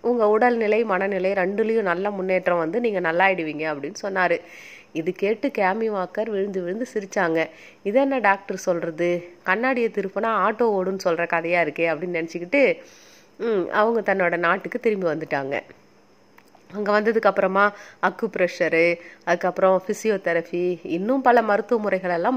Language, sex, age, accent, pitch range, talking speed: Tamil, female, 30-49, native, 175-225 Hz, 120 wpm